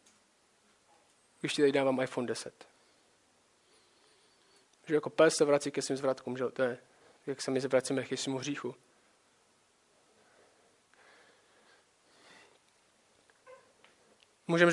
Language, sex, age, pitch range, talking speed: Czech, male, 20-39, 160-195 Hz, 100 wpm